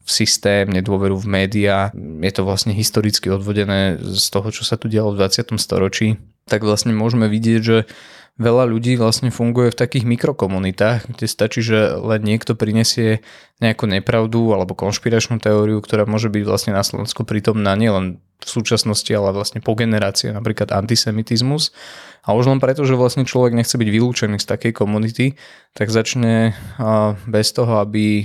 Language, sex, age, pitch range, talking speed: Slovak, male, 20-39, 100-115 Hz, 165 wpm